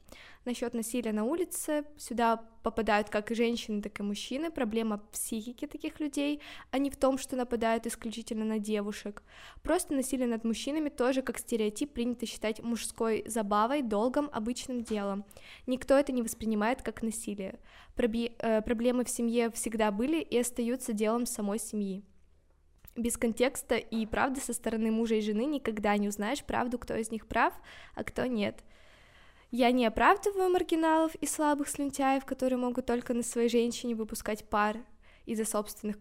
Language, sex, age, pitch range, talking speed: Russian, female, 10-29, 215-255 Hz, 155 wpm